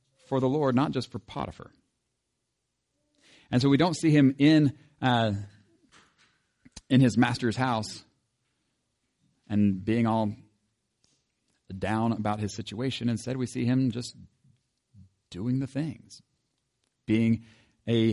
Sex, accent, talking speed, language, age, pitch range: male, American, 120 wpm, English, 40-59, 115-140 Hz